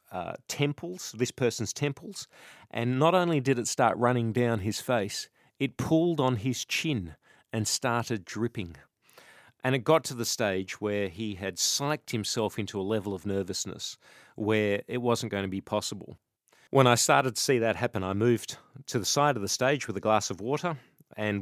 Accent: Australian